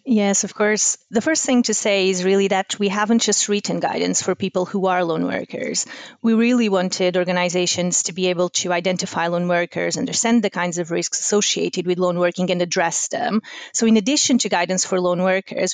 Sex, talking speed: female, 200 wpm